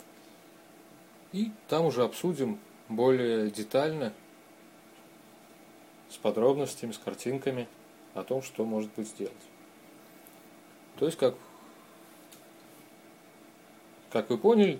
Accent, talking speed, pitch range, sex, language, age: native, 90 wpm, 110-150 Hz, male, Russian, 30-49